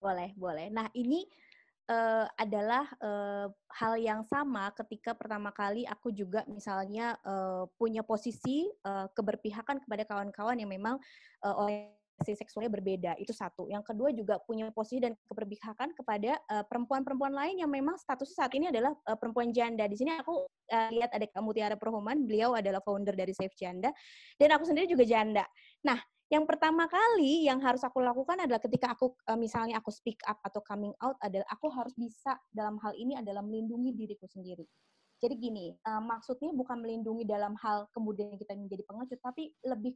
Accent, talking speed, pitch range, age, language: native, 170 wpm, 210-260 Hz, 20-39, Indonesian